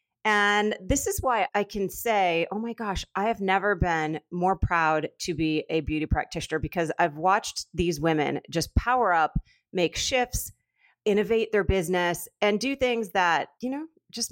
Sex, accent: female, American